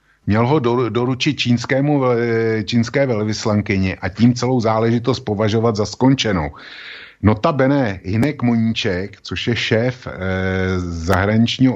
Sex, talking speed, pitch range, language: male, 105 wpm, 95-120 Hz, Slovak